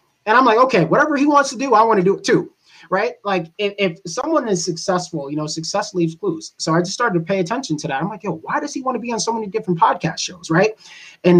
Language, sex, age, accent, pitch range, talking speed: English, male, 20-39, American, 150-195 Hz, 280 wpm